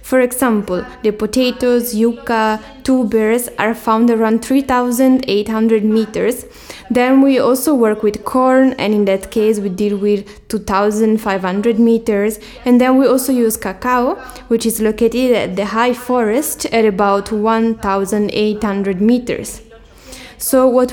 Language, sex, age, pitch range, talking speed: English, female, 10-29, 215-255 Hz, 130 wpm